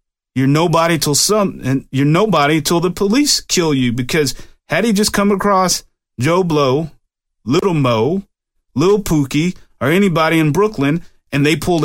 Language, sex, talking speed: English, male, 155 wpm